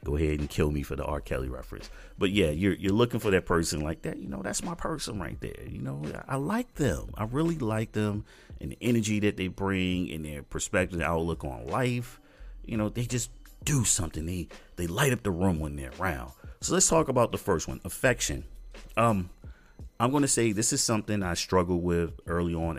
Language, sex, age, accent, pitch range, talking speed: English, male, 30-49, American, 70-100 Hz, 225 wpm